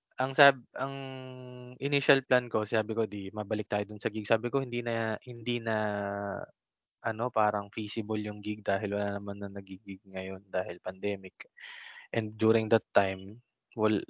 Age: 20-39